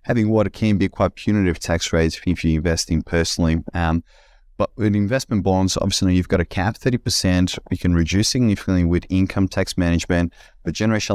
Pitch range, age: 85-100 Hz, 30-49